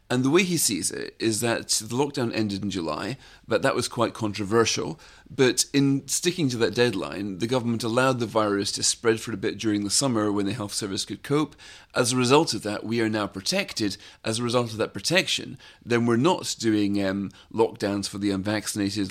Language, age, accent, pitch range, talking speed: English, 40-59, British, 100-125 Hz, 210 wpm